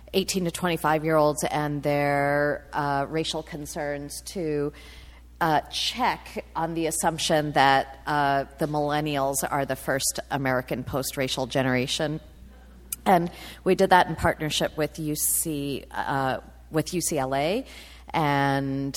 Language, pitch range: English, 130-165 Hz